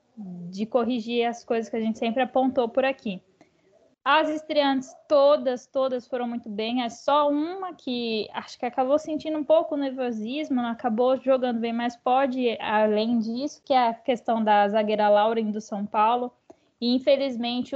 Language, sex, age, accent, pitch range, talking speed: Portuguese, female, 10-29, Brazilian, 220-275 Hz, 165 wpm